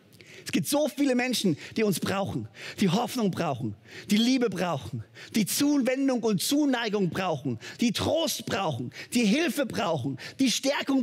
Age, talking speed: 40-59, 145 wpm